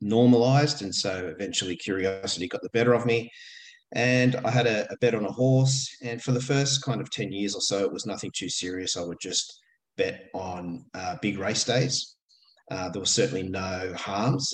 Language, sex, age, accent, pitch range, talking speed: English, male, 30-49, Australian, 100-125 Hz, 200 wpm